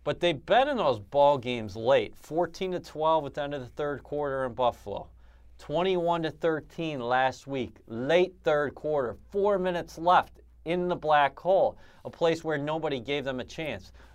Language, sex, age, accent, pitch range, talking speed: English, male, 30-49, American, 120-155 Hz, 165 wpm